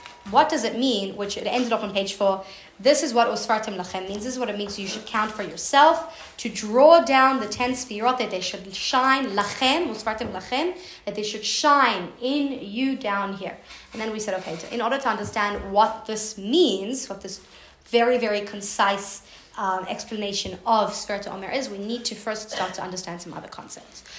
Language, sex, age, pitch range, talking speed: English, female, 20-39, 200-245 Hz, 200 wpm